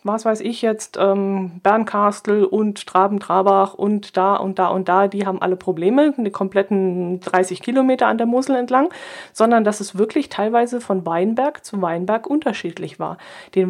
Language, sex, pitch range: German, female, 190-230 Hz